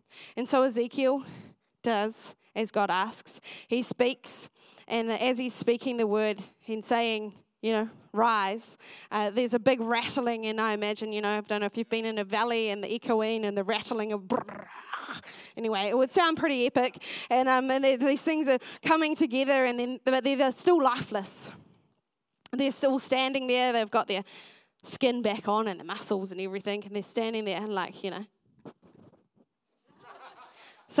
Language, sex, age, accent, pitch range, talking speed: English, female, 20-39, Australian, 215-265 Hz, 170 wpm